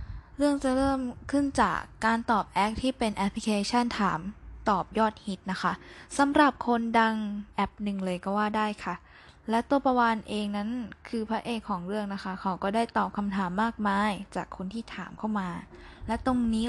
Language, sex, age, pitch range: Thai, female, 10-29, 200-245 Hz